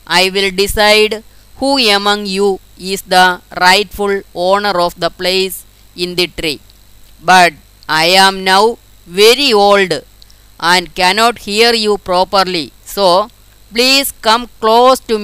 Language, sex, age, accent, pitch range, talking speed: Malayalam, female, 20-39, native, 175-210 Hz, 125 wpm